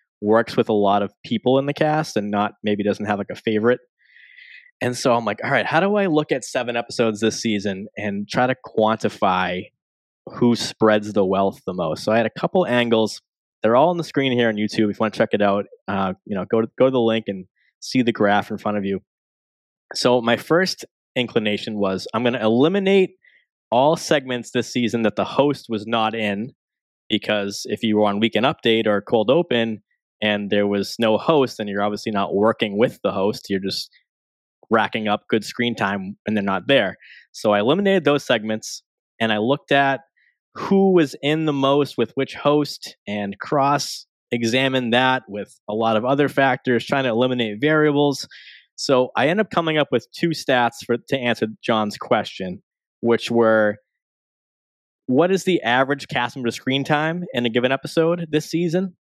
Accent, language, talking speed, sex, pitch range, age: American, English, 195 wpm, male, 105-140 Hz, 20-39